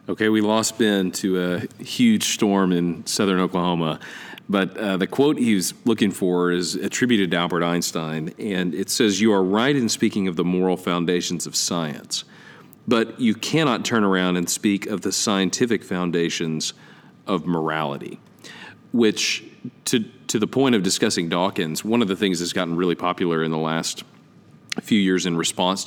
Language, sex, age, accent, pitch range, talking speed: English, male, 40-59, American, 85-100 Hz, 170 wpm